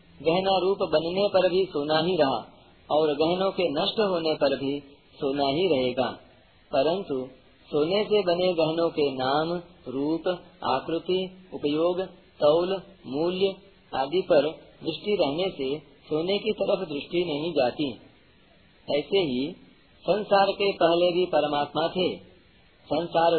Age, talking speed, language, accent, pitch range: 40-59, 130 wpm, Hindi, native, 140-180 Hz